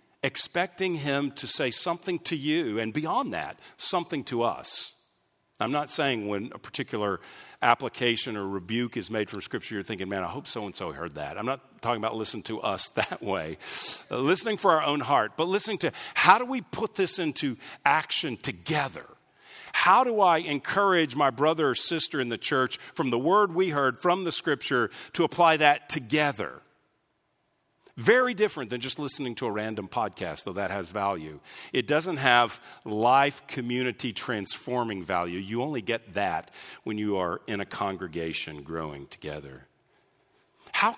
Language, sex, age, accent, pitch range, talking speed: English, male, 50-69, American, 100-150 Hz, 170 wpm